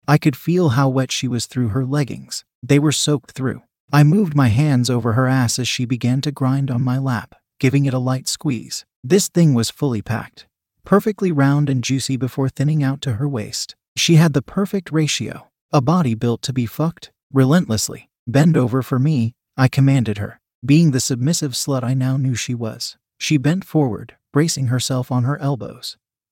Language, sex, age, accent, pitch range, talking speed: English, male, 30-49, American, 125-150 Hz, 195 wpm